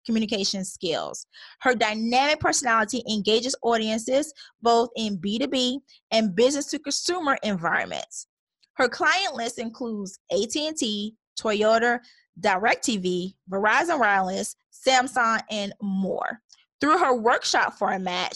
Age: 20-39